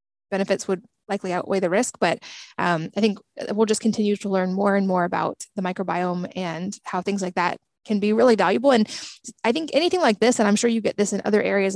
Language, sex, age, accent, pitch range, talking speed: English, female, 20-39, American, 190-215 Hz, 230 wpm